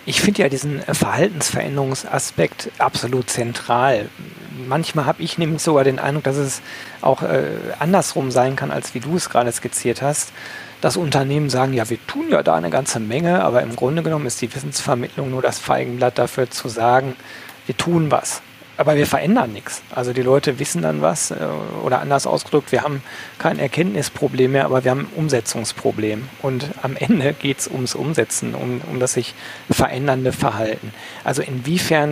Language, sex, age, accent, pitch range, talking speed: German, male, 40-59, German, 125-150 Hz, 175 wpm